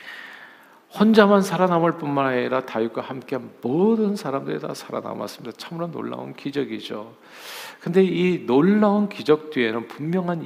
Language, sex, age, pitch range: Korean, male, 50-69, 115-155 Hz